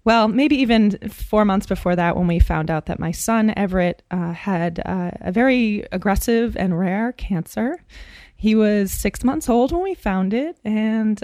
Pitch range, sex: 180-215 Hz, female